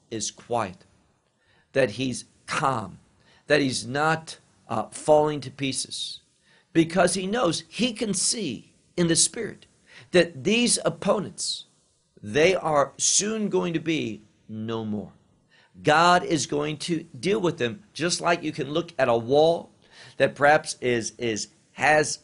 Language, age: English, 50-69